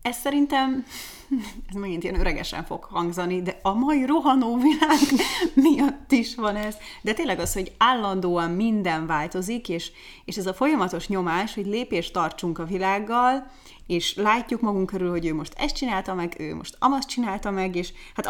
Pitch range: 180-250 Hz